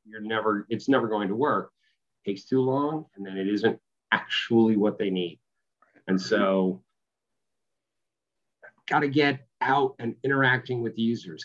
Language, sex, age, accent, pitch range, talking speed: English, male, 40-59, American, 110-140 Hz, 140 wpm